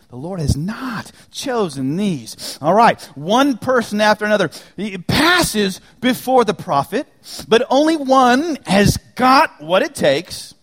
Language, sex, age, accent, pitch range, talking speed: English, male, 30-49, American, 135-195 Hz, 135 wpm